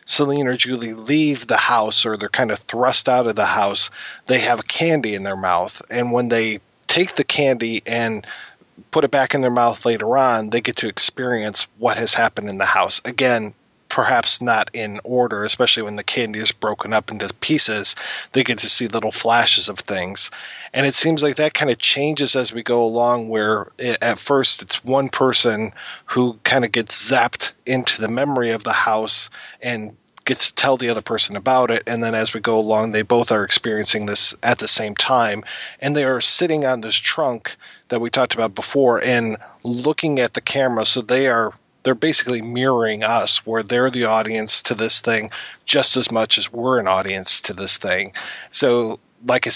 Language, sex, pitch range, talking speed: English, male, 110-130 Hz, 200 wpm